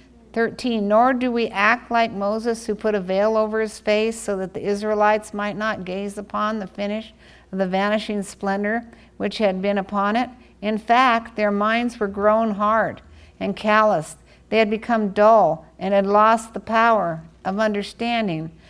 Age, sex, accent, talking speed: 50-69, female, American, 170 wpm